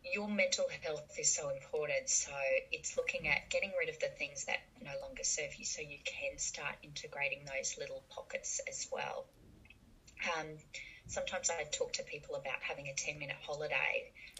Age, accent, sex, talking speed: 20-39, Australian, female, 170 wpm